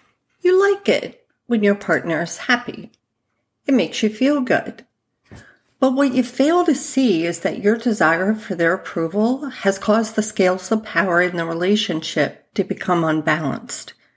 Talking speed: 160 wpm